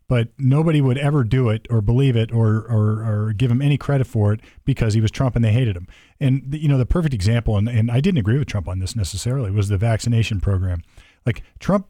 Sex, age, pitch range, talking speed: male, 40-59, 110-140 Hz, 240 wpm